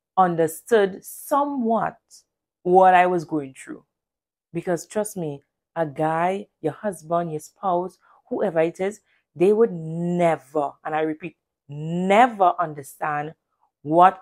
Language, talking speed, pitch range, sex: English, 120 wpm, 160-215 Hz, female